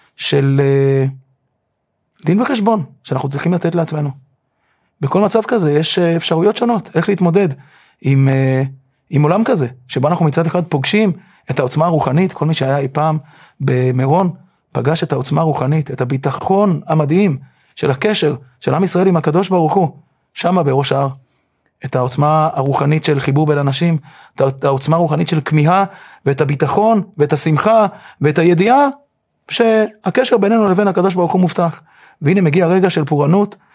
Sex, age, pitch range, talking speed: male, 30-49, 140-180 Hz, 145 wpm